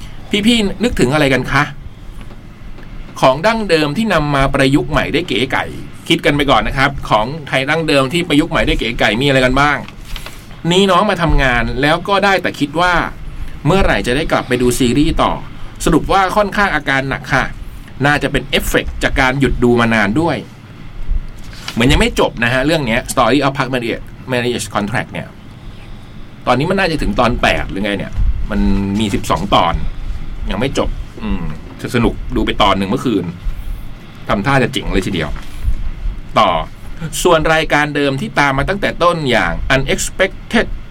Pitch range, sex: 115-155 Hz, male